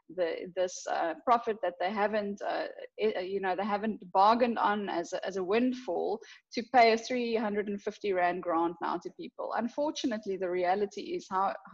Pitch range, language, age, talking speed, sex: 180-220 Hz, English, 10-29, 170 wpm, female